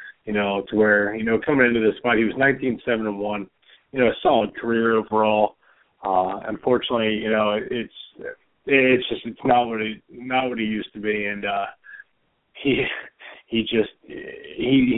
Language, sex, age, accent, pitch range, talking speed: English, male, 20-39, American, 105-120 Hz, 175 wpm